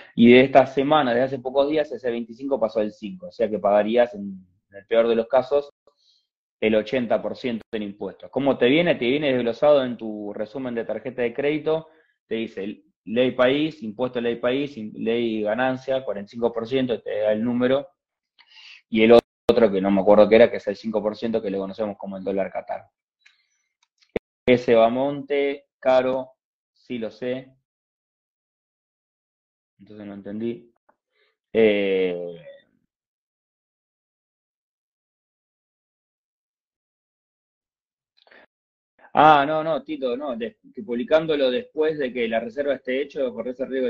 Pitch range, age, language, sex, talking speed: 105-135 Hz, 20-39, Spanish, male, 145 wpm